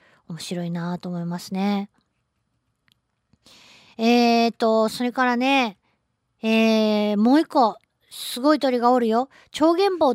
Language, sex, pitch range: Japanese, female, 205-280 Hz